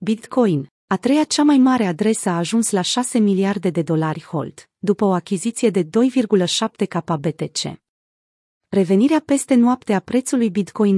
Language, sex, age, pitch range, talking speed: Romanian, female, 30-49, 180-225 Hz, 150 wpm